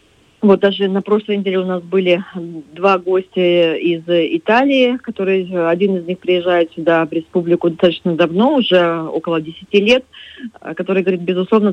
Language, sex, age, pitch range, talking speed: Russian, female, 30-49, 170-190 Hz, 150 wpm